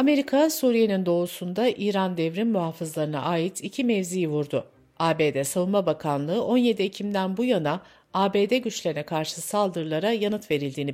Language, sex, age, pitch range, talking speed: Turkish, female, 60-79, 165-230 Hz, 125 wpm